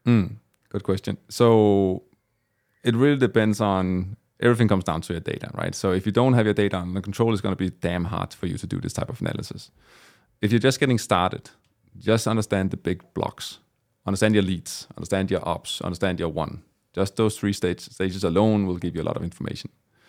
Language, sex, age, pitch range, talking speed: English, male, 30-49, 95-110 Hz, 210 wpm